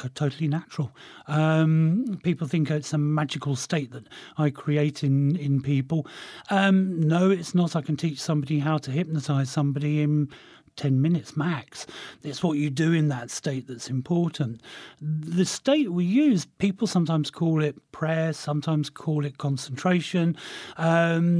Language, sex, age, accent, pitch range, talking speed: English, male, 40-59, British, 145-170 Hz, 150 wpm